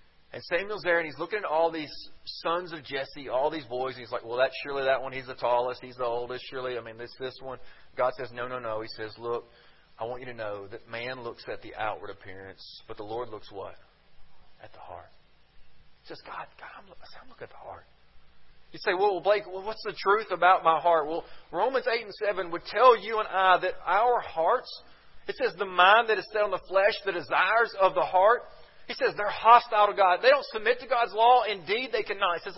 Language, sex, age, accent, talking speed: English, male, 40-59, American, 240 wpm